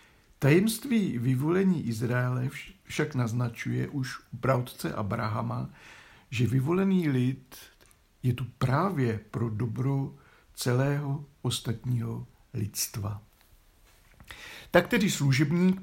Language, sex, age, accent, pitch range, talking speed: Czech, male, 60-79, native, 120-155 Hz, 85 wpm